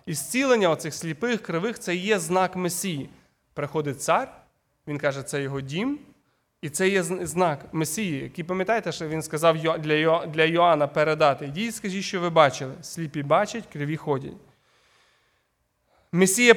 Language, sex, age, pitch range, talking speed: Ukrainian, male, 30-49, 155-215 Hz, 145 wpm